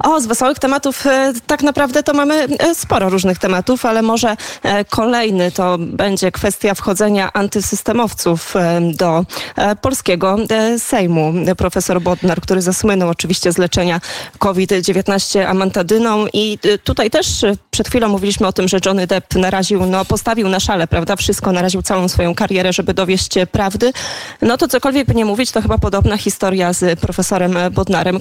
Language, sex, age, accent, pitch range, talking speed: Polish, female, 20-39, native, 180-210 Hz, 145 wpm